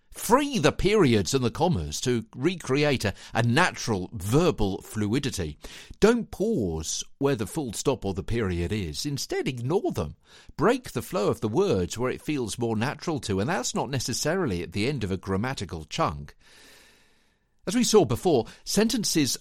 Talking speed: 165 wpm